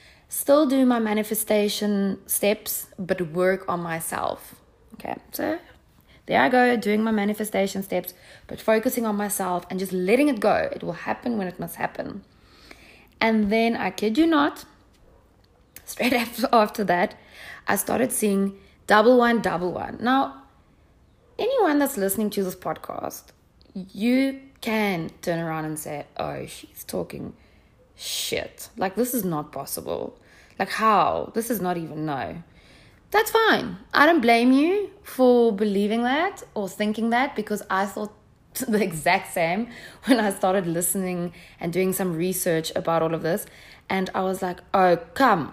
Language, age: English, 20-39